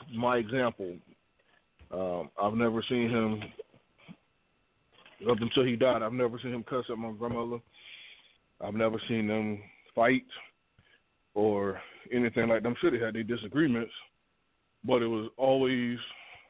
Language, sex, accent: English, male, American